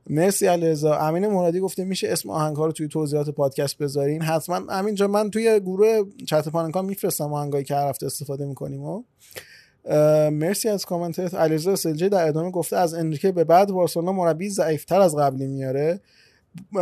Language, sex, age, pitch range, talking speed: Persian, male, 20-39, 150-190 Hz, 170 wpm